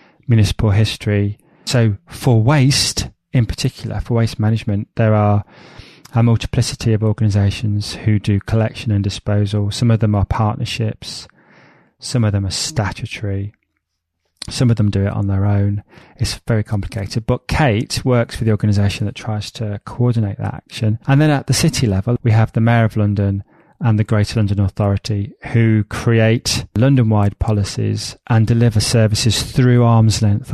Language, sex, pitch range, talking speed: English, male, 105-120 Hz, 160 wpm